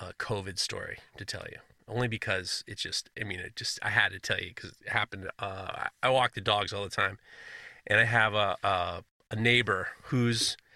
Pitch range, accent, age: 105-140 Hz, American, 30-49